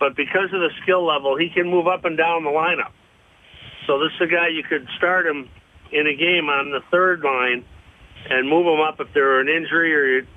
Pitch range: 140-170 Hz